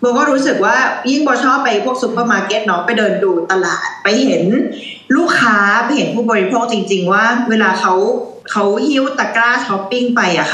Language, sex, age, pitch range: Thai, female, 20-39, 200-250 Hz